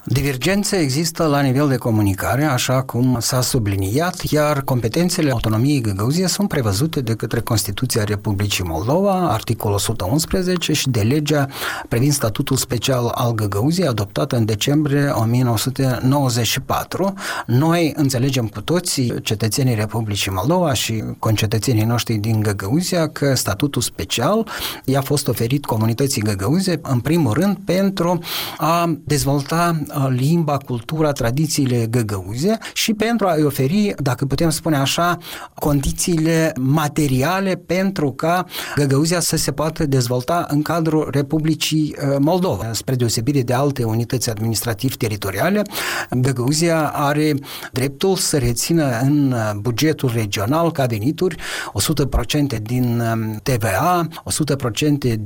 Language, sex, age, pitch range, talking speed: Romanian, male, 30-49, 120-160 Hz, 115 wpm